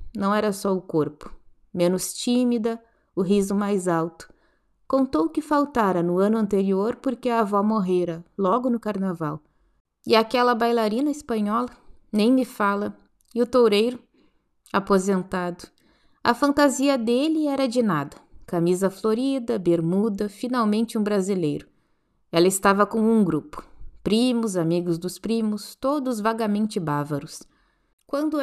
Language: Portuguese